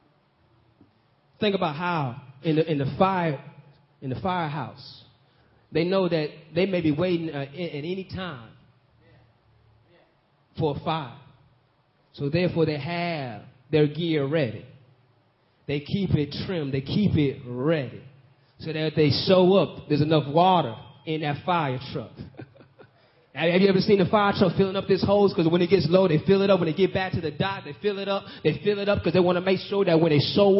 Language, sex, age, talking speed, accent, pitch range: English, male, 30-49, 190 wpm, American, 140-195 Hz